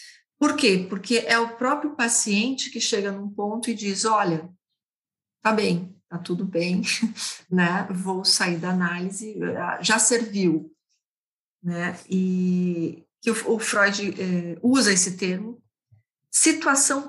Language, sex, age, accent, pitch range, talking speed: Portuguese, female, 50-69, Brazilian, 175-225 Hz, 125 wpm